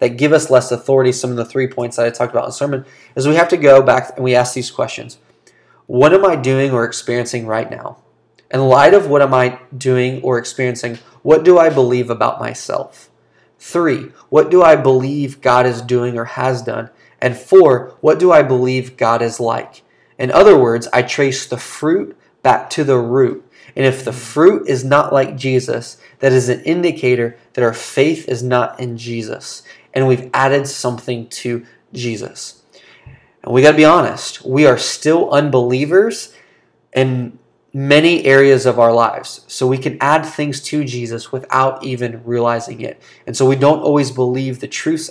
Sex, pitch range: male, 120-140 Hz